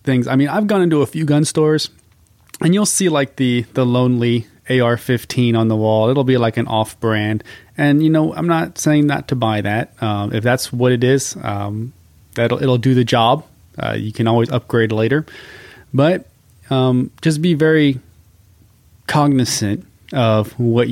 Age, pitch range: 30-49, 105-130 Hz